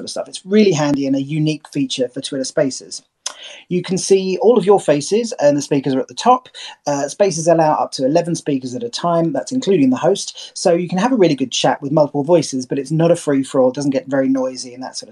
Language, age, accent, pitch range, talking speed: English, 30-49, British, 135-175 Hz, 255 wpm